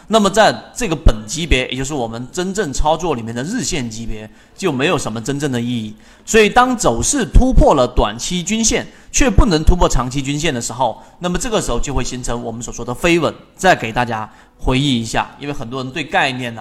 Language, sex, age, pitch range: Chinese, male, 30-49, 125-180 Hz